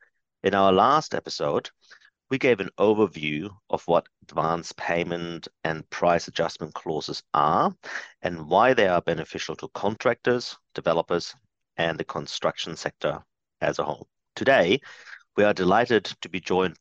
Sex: male